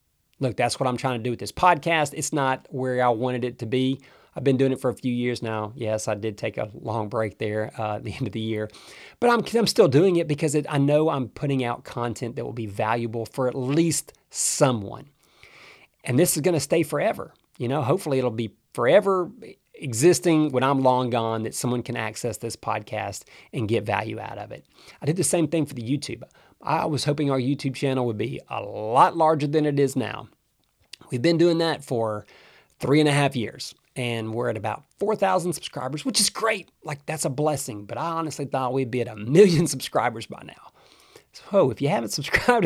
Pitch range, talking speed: 115-155 Hz, 220 wpm